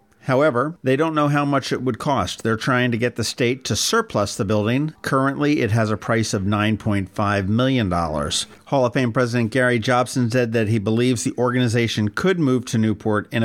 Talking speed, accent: 195 wpm, American